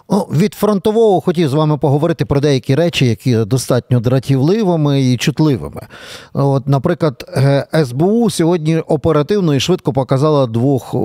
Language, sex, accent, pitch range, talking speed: Ukrainian, male, native, 125-165 Hz, 130 wpm